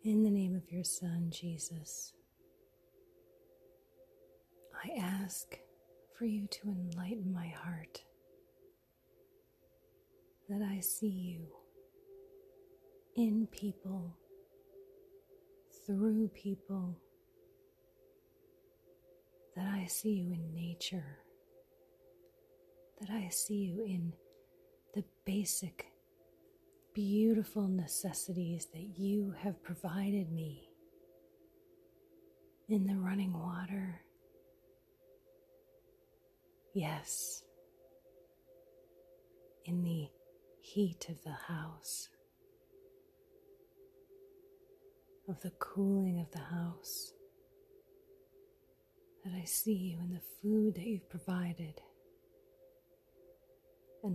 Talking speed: 80 wpm